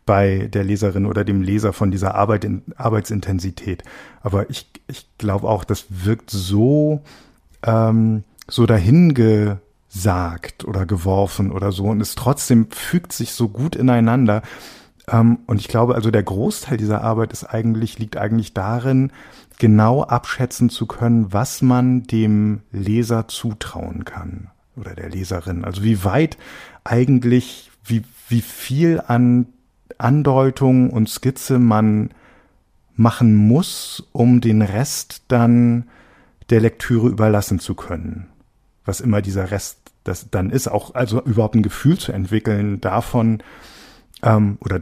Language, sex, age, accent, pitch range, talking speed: German, male, 50-69, German, 100-120 Hz, 135 wpm